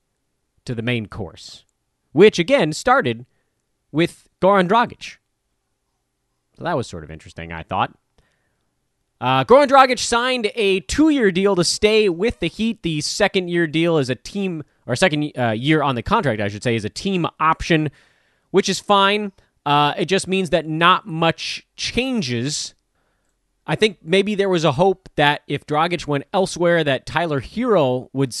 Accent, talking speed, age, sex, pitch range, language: American, 165 wpm, 30-49, male, 125-185 Hz, English